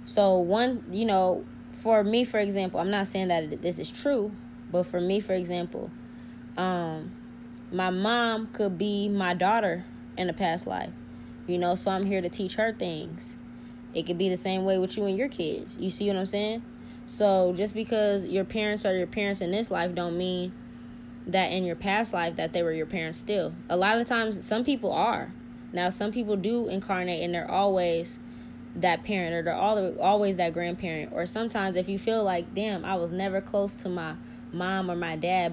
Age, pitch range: 10-29, 170-205 Hz